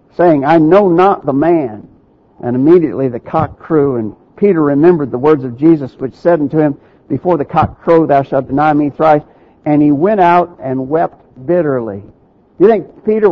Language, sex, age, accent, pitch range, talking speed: English, male, 60-79, American, 140-175 Hz, 190 wpm